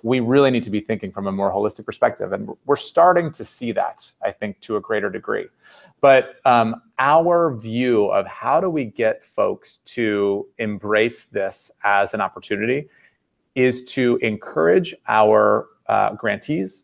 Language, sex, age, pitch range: English, male, 30-49, 105-140 Hz